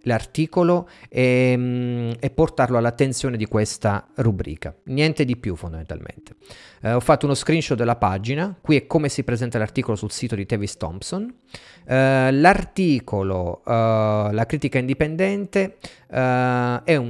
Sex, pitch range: male, 110-155 Hz